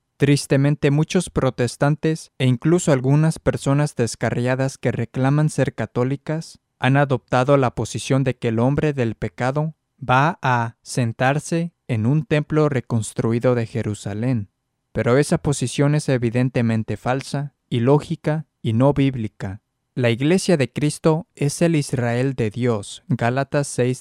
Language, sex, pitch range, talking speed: Spanish, male, 120-145 Hz, 125 wpm